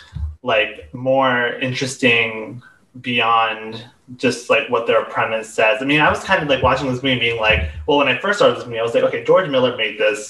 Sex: male